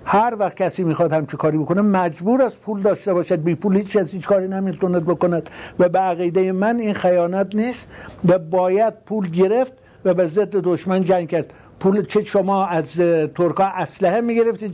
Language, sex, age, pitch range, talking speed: English, male, 60-79, 130-185 Hz, 185 wpm